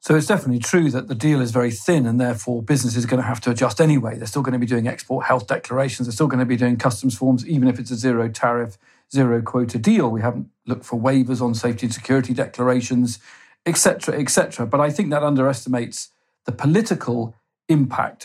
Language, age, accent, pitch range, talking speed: English, 40-59, British, 125-155 Hz, 215 wpm